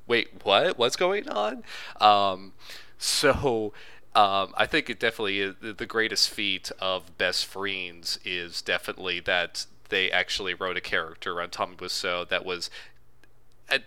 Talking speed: 145 wpm